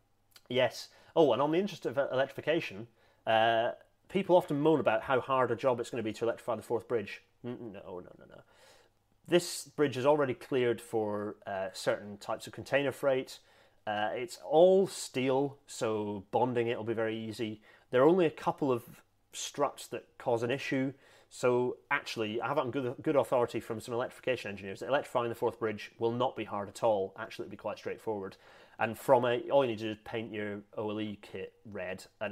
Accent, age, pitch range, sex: British, 30-49, 105-135 Hz, male